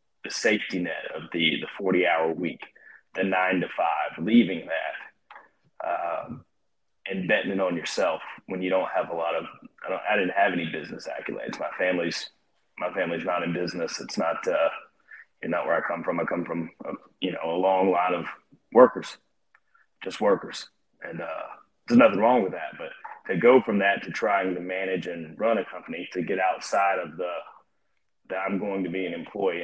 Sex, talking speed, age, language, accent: male, 190 wpm, 30-49, English, American